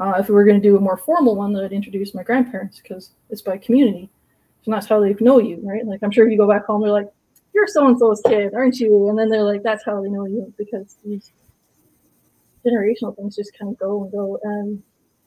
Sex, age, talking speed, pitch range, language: female, 20-39, 245 wpm, 200-235 Hz, English